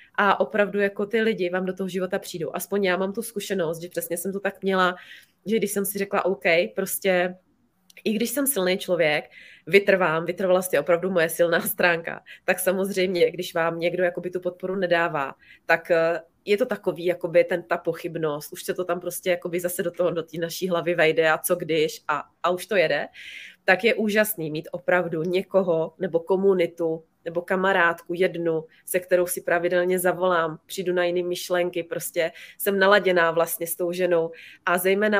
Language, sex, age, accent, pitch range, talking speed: Czech, female, 20-39, native, 170-190 Hz, 180 wpm